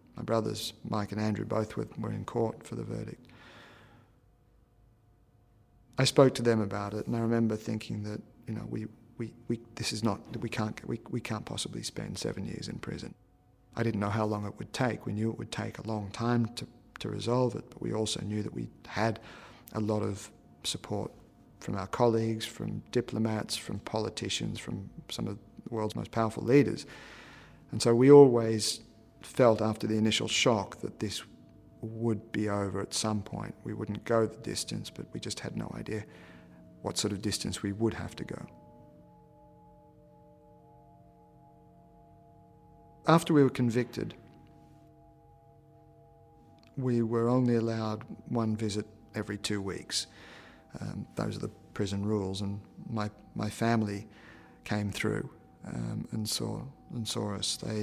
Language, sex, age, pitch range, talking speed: English, male, 40-59, 105-115 Hz, 165 wpm